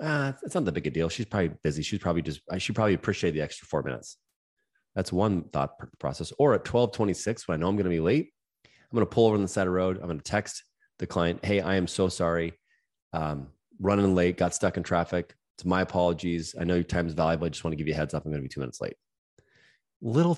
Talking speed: 270 wpm